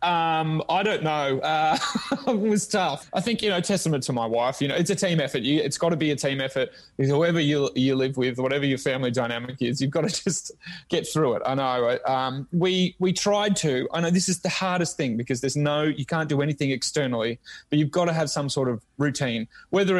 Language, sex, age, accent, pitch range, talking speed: English, male, 30-49, Australian, 130-165 Hz, 240 wpm